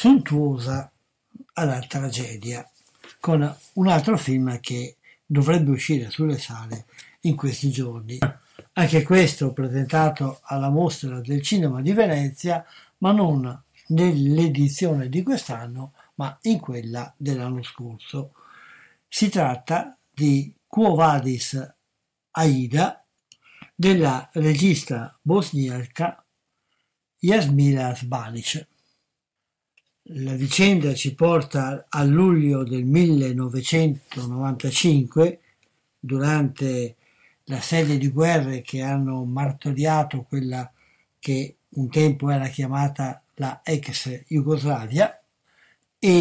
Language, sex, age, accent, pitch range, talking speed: Italian, male, 60-79, native, 130-160 Hz, 90 wpm